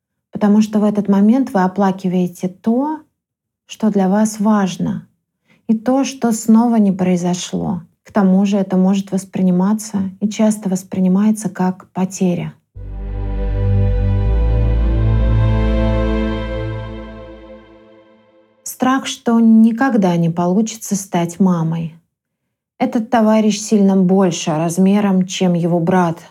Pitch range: 175-215 Hz